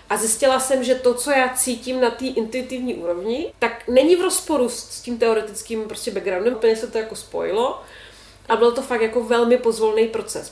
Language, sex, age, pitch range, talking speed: Czech, female, 30-49, 220-255 Hz, 195 wpm